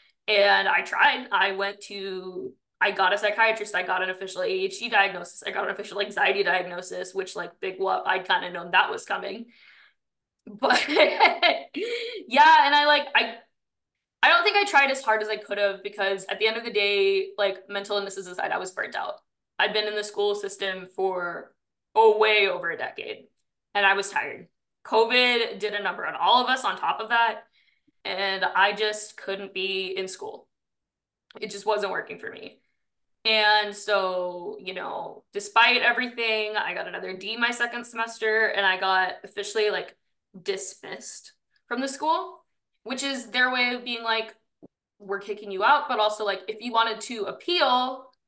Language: English